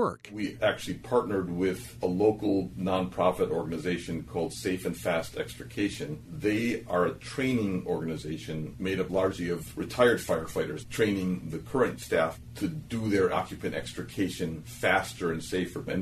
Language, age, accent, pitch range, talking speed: English, 40-59, American, 85-100 Hz, 140 wpm